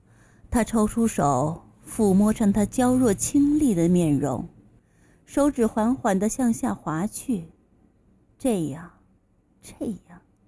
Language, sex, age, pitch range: Chinese, female, 30-49, 180-280 Hz